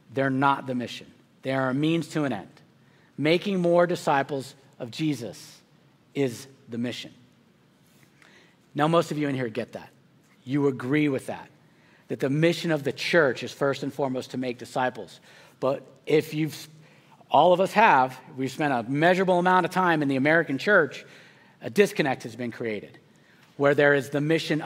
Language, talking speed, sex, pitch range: English, 175 wpm, male, 135-175 Hz